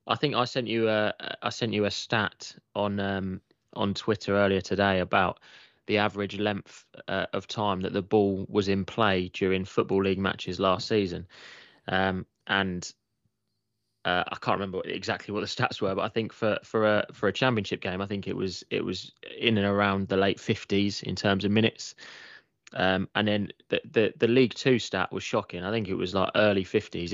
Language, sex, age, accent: English, male, 20-39, British